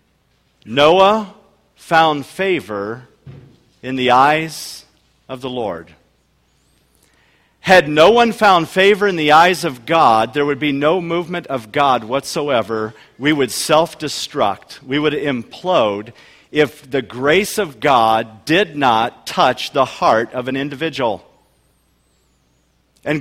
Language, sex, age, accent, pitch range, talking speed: English, male, 50-69, American, 115-160 Hz, 120 wpm